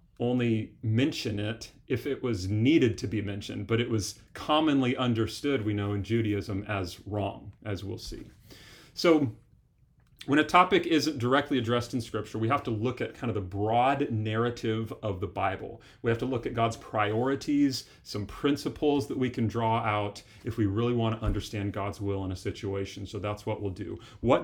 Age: 40-59